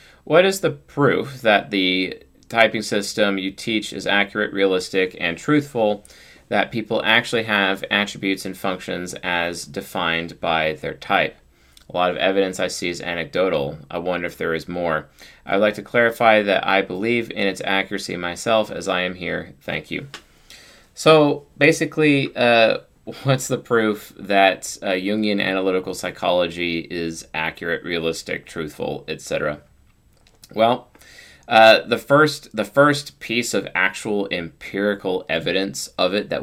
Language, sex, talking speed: English, male, 145 wpm